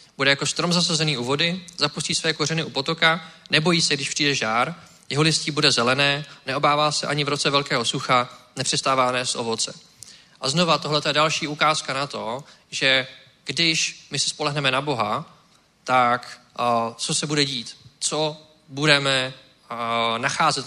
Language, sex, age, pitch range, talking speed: Czech, male, 20-39, 125-145 Hz, 155 wpm